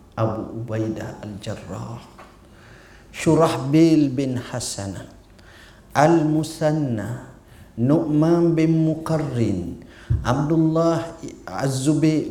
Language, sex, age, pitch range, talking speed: Malay, male, 50-69, 110-160 Hz, 60 wpm